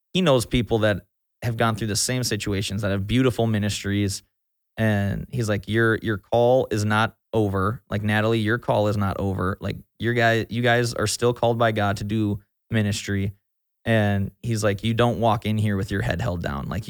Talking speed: 200 wpm